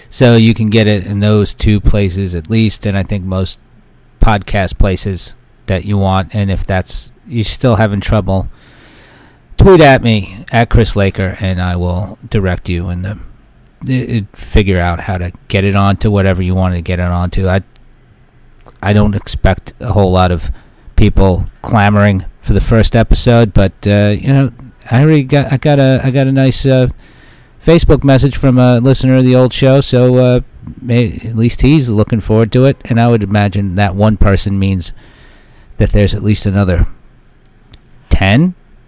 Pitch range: 95-125 Hz